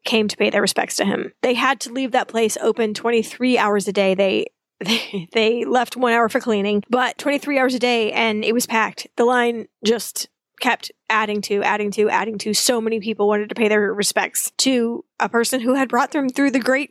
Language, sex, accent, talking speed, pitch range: English, female, American, 225 wpm, 215-270 Hz